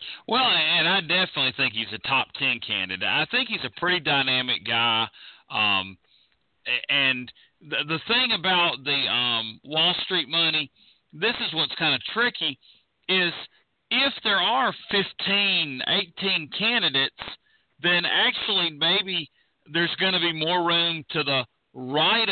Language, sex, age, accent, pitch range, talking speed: English, male, 40-59, American, 120-160 Hz, 140 wpm